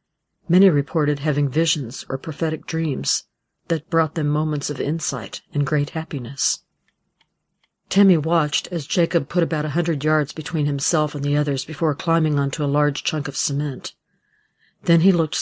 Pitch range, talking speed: 145-165 Hz, 160 wpm